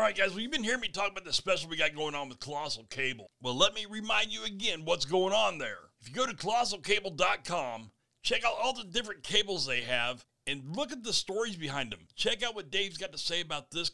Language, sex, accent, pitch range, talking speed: English, male, American, 130-200 Hz, 250 wpm